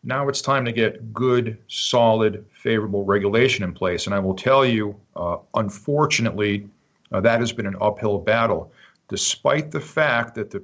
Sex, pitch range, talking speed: male, 105-135 Hz, 170 wpm